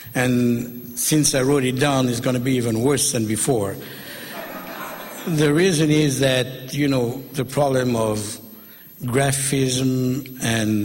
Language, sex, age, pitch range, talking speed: English, male, 60-79, 115-145 Hz, 140 wpm